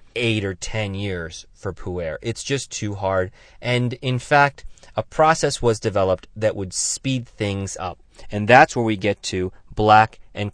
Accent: American